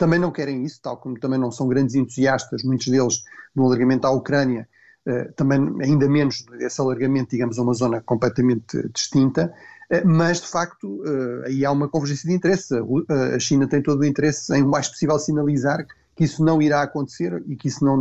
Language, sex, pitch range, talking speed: Portuguese, male, 125-145 Hz, 185 wpm